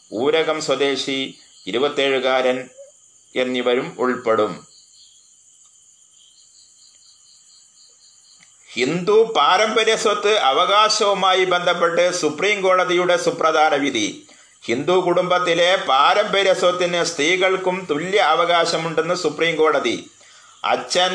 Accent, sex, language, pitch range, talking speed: native, male, Malayalam, 155-185 Hz, 65 wpm